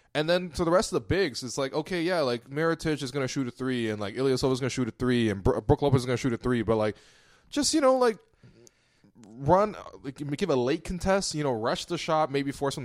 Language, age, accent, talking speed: English, 20-39, American, 275 wpm